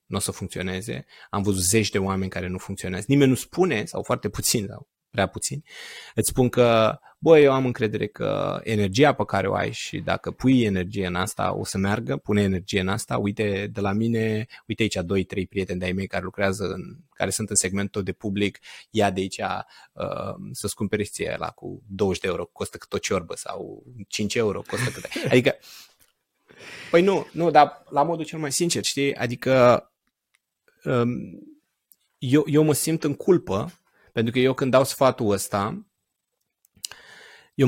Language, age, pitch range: Romanian, 20-39, 100-145 Hz